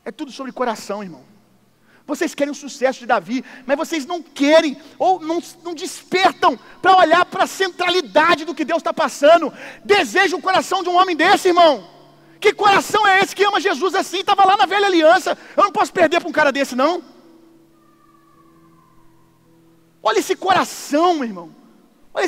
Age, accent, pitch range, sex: 40-59, Brazilian, 230-330 Hz, male